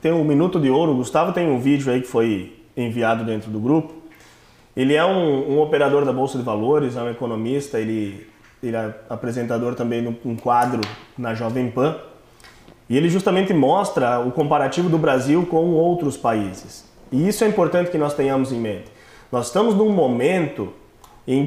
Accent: Brazilian